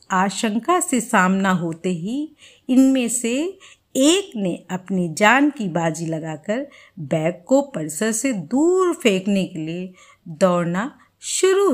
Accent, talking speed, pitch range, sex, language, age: native, 125 wpm, 175-280 Hz, female, Hindi, 50-69